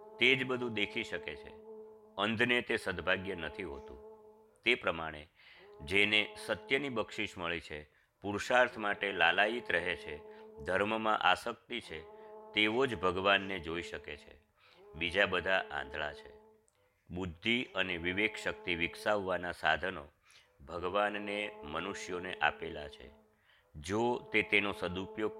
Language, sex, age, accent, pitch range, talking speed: Gujarati, male, 50-69, native, 95-125 Hz, 90 wpm